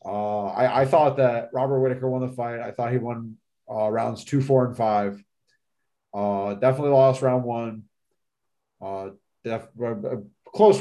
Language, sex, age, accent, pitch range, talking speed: English, male, 30-49, American, 115-140 Hz, 155 wpm